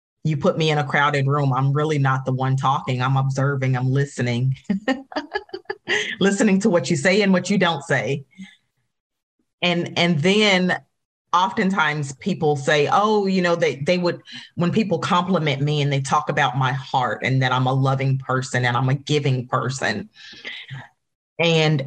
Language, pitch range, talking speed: English, 140-175 Hz, 165 wpm